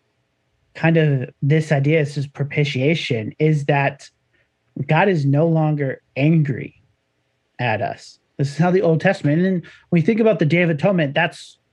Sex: male